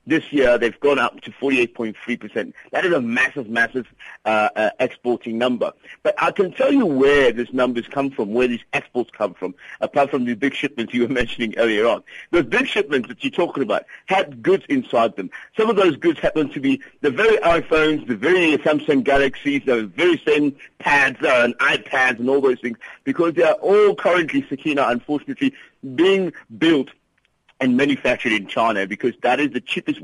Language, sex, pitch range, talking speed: English, male, 120-185 Hz, 190 wpm